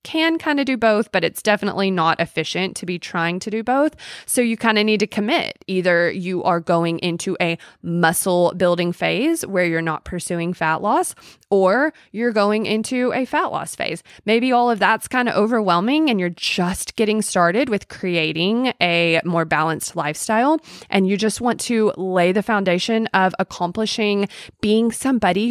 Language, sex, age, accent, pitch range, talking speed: English, female, 20-39, American, 175-230 Hz, 180 wpm